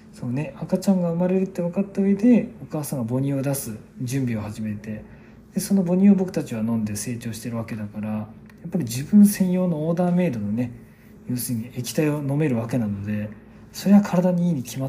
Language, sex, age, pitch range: Japanese, male, 40-59, 115-175 Hz